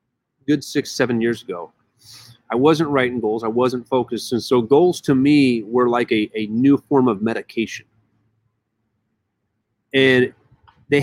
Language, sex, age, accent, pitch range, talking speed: English, male, 30-49, American, 115-145 Hz, 145 wpm